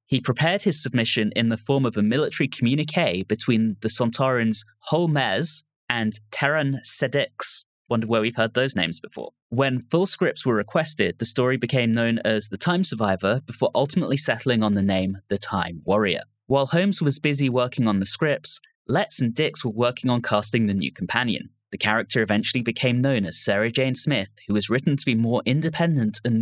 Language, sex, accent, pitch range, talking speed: English, male, British, 110-145 Hz, 185 wpm